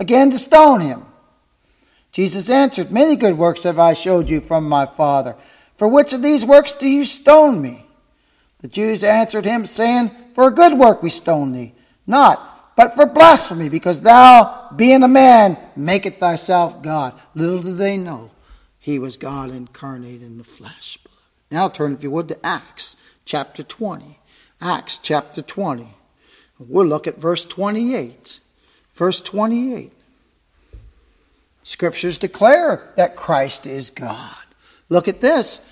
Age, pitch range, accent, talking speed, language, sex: 60-79, 170-255 Hz, American, 150 wpm, English, male